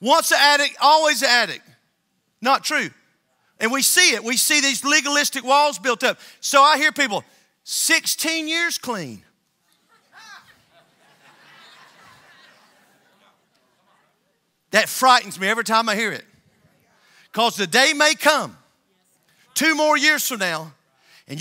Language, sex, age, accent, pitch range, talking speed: English, male, 40-59, American, 240-320 Hz, 125 wpm